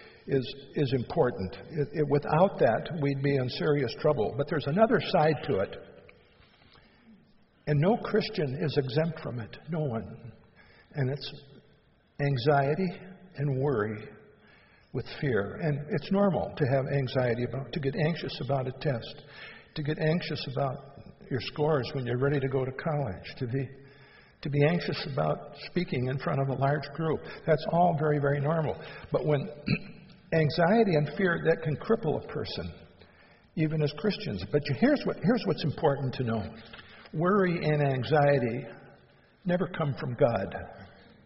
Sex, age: male, 60-79